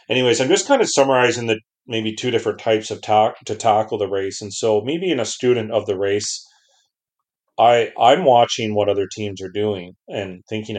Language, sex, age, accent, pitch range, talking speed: English, male, 40-59, American, 95-110 Hz, 200 wpm